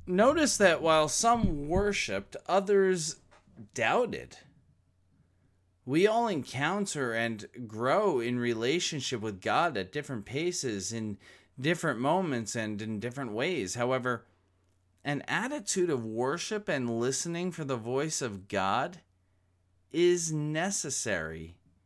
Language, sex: English, male